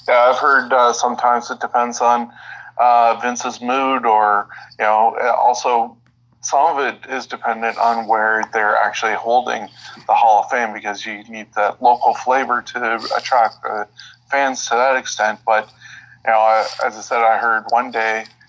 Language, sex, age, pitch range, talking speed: English, male, 20-39, 110-120 Hz, 170 wpm